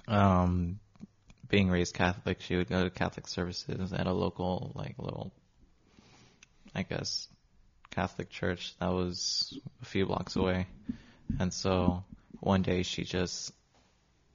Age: 20-39